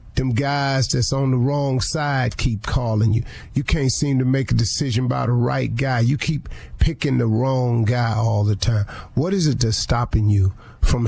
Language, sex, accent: English, male, American